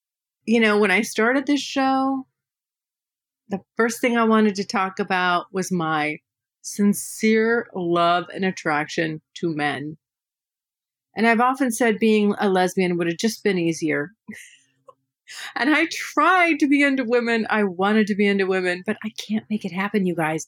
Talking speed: 165 wpm